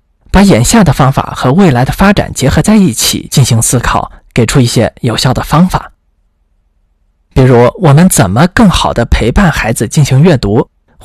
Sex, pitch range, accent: male, 105-160 Hz, native